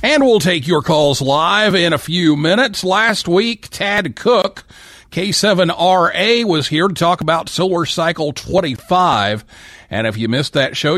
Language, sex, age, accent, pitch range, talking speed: English, male, 40-59, American, 135-195 Hz, 160 wpm